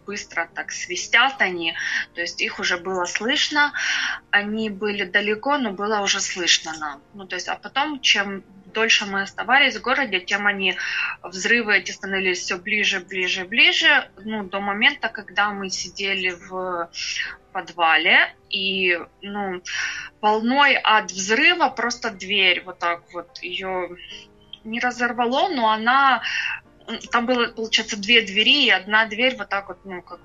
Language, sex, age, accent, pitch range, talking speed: Ukrainian, female, 20-39, native, 195-240 Hz, 145 wpm